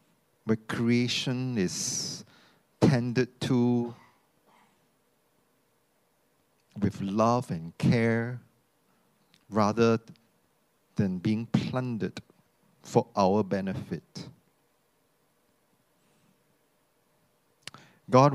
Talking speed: 55 wpm